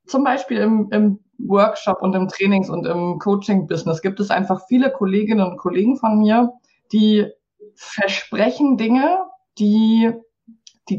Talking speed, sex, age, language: 135 wpm, female, 20-39, German